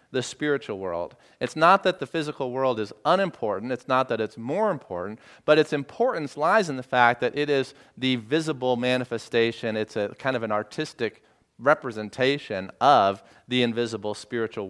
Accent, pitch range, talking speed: American, 115-150 Hz, 165 wpm